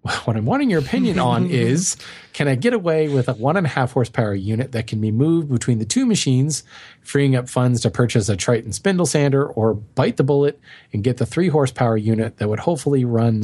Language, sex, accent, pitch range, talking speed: English, male, American, 115-140 Hz, 225 wpm